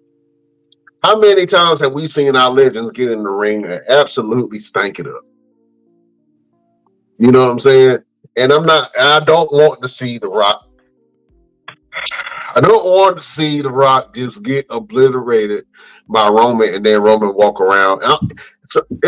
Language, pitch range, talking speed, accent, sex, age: English, 125-185 Hz, 165 wpm, American, male, 30-49